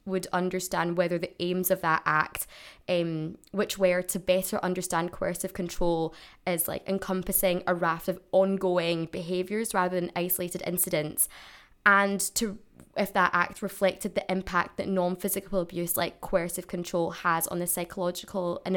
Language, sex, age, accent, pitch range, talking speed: English, female, 20-39, British, 170-190 Hz, 150 wpm